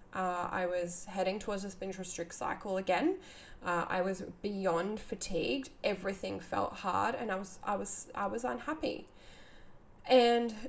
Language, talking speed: English, 145 wpm